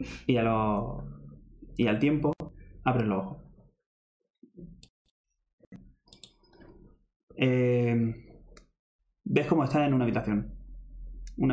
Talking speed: 90 wpm